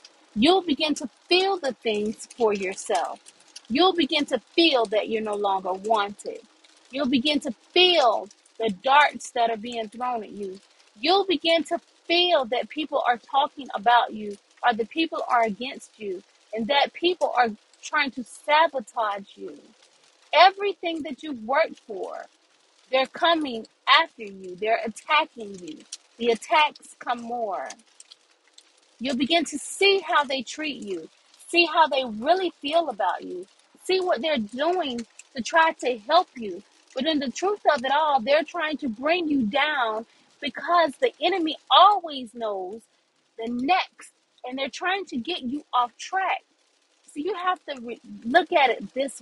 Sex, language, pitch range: female, English, 230-330 Hz